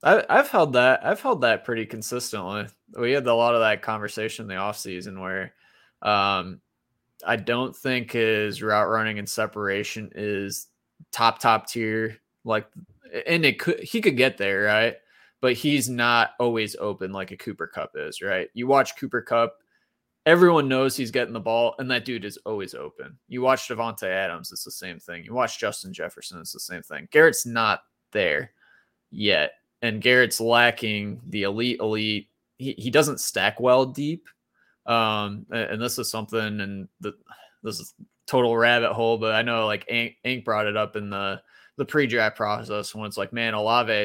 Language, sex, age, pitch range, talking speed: English, male, 20-39, 105-125 Hz, 180 wpm